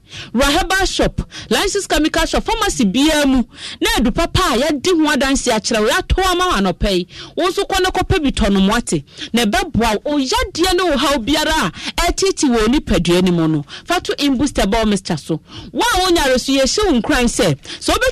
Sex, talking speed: female, 160 wpm